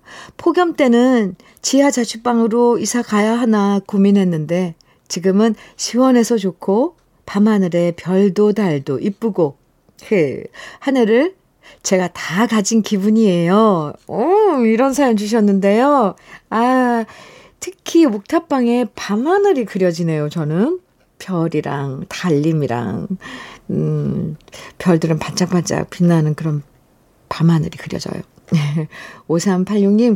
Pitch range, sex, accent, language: 165-235 Hz, female, native, Korean